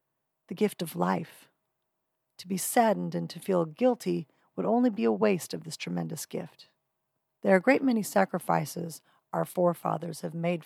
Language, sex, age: English, female, 40-59